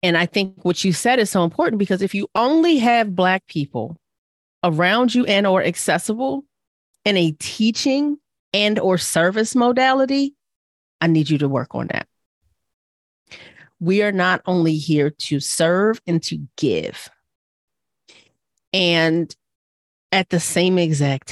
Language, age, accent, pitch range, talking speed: English, 30-49, American, 150-200 Hz, 140 wpm